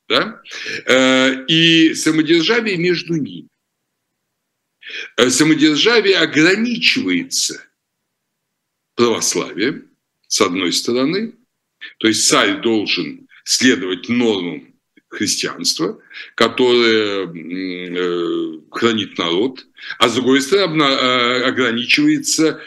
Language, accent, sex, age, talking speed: Russian, native, male, 60-79, 65 wpm